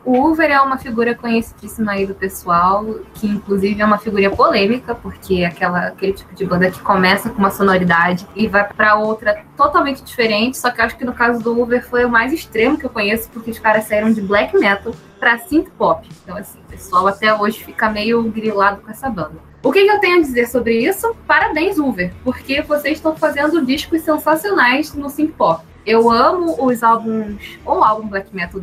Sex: female